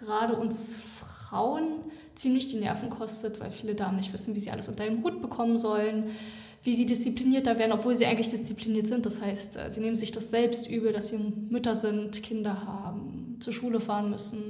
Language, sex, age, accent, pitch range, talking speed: German, female, 20-39, German, 210-235 Hz, 195 wpm